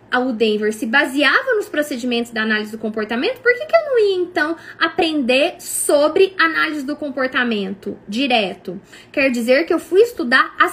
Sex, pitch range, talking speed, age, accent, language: female, 240-330 Hz, 160 wpm, 20-39, Brazilian, Portuguese